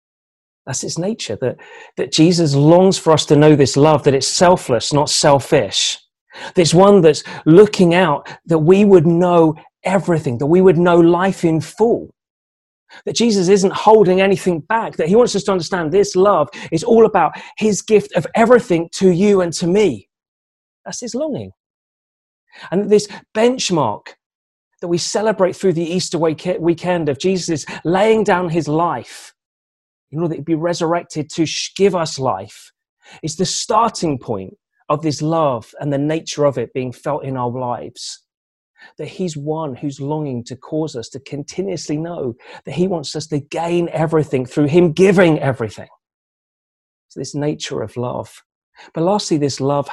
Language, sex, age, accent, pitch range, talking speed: English, male, 30-49, British, 140-185 Hz, 165 wpm